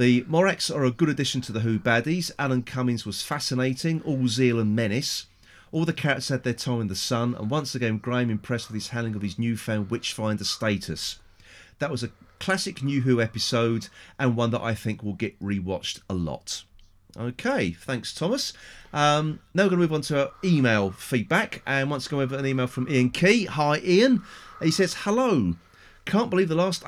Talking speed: 200 wpm